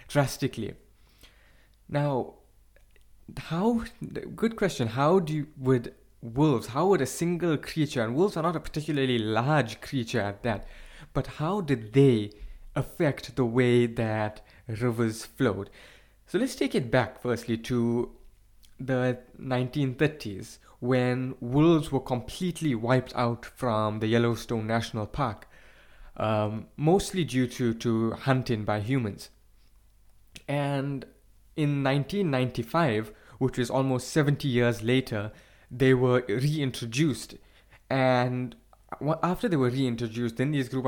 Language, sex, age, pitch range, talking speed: English, male, 20-39, 115-145 Hz, 120 wpm